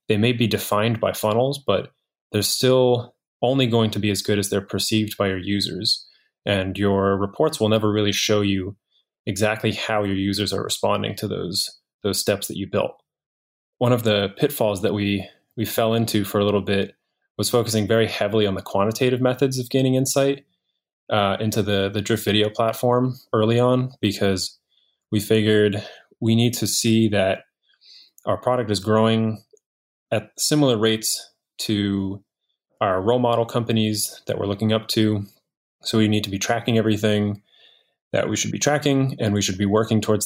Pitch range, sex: 100-120 Hz, male